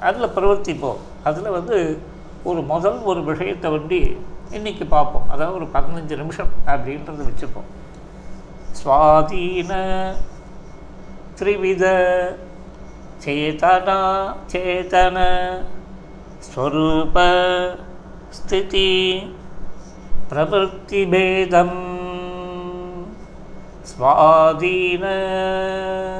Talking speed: 55 wpm